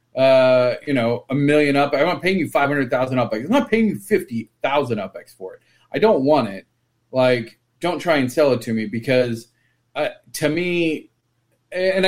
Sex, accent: male, American